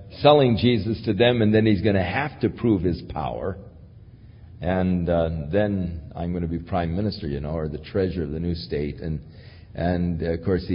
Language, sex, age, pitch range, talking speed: English, male, 50-69, 90-115 Hz, 205 wpm